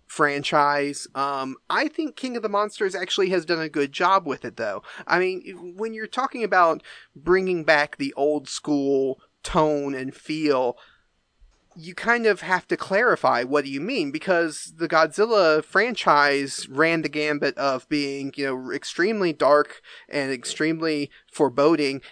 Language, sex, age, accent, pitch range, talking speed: English, male, 30-49, American, 140-190 Hz, 155 wpm